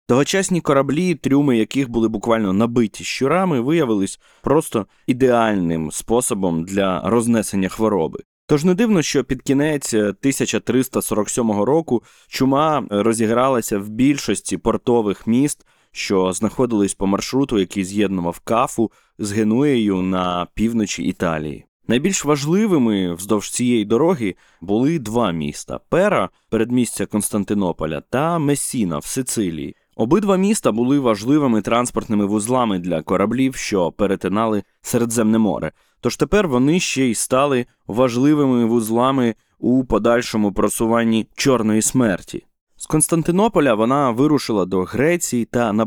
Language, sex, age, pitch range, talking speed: Ukrainian, male, 20-39, 105-140 Hz, 120 wpm